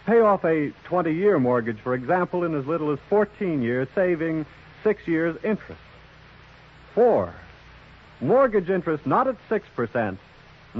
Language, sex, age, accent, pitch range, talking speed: English, male, 70-89, American, 135-185 Hz, 130 wpm